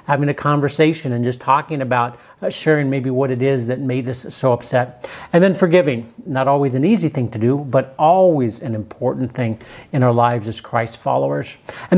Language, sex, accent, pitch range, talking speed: English, male, American, 130-165 Hz, 195 wpm